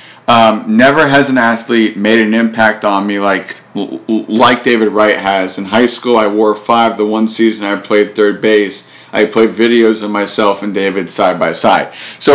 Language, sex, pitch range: English, male, 105-120 Hz